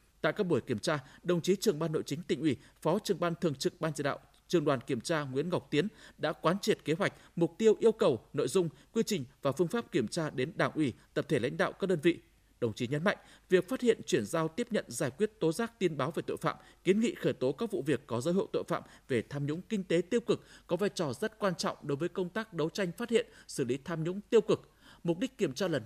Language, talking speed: Vietnamese, 280 wpm